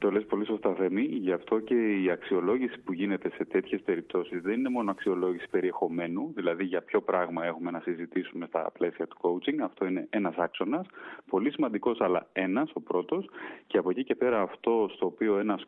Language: Greek